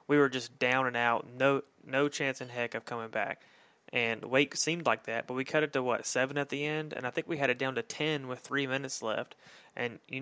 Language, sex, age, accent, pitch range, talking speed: English, male, 30-49, American, 120-140 Hz, 260 wpm